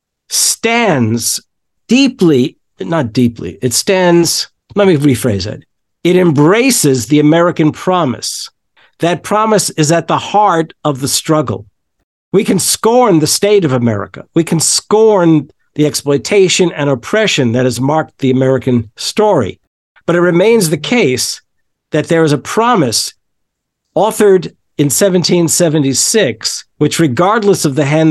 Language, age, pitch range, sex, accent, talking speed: English, 50-69, 130-180 Hz, male, American, 130 wpm